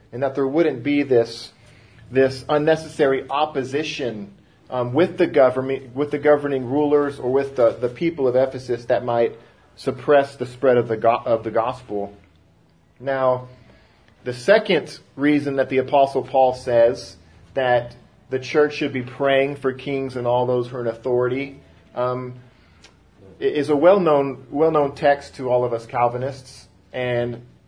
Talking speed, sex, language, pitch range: 160 wpm, male, English, 125-150 Hz